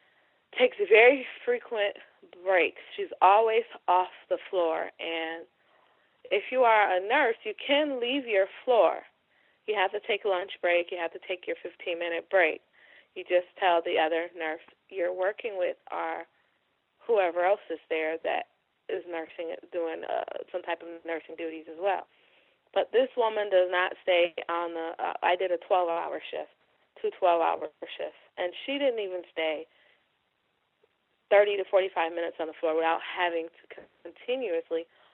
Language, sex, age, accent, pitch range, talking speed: English, female, 20-39, American, 170-240 Hz, 160 wpm